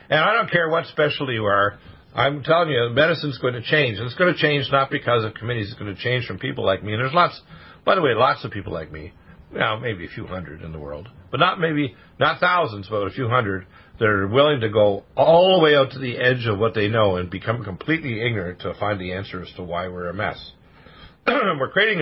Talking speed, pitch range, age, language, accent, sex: 250 wpm, 95-125 Hz, 50-69, English, American, male